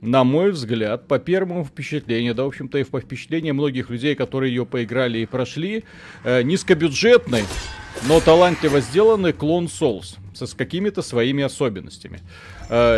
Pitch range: 105-155 Hz